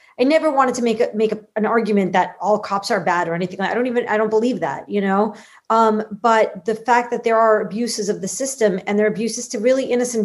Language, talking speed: English, 260 wpm